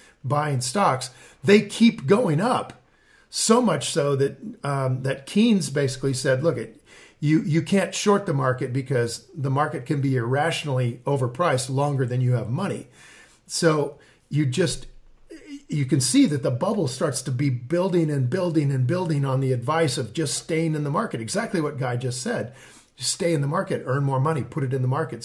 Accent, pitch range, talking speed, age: American, 125-160 Hz, 190 wpm, 50-69